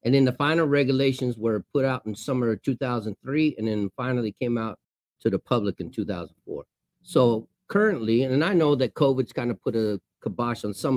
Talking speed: 195 wpm